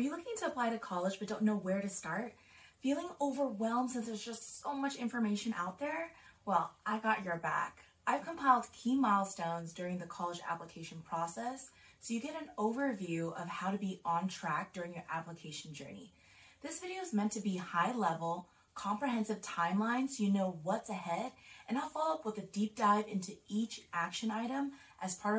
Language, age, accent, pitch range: English, 20-39, American, 170-230 Hz